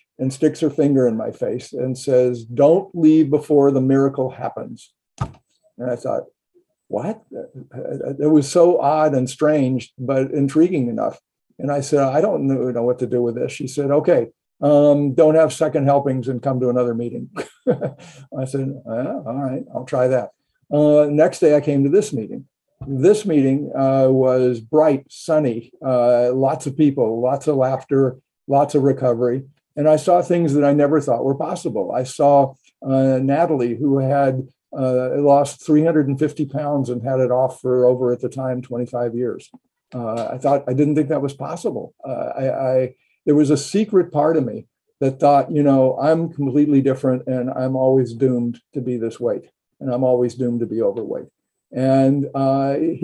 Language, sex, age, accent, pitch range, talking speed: English, male, 50-69, American, 130-150 Hz, 180 wpm